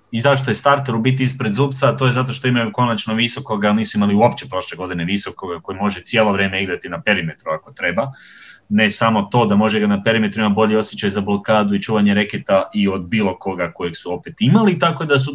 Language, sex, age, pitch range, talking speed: Croatian, male, 30-49, 125-150 Hz, 225 wpm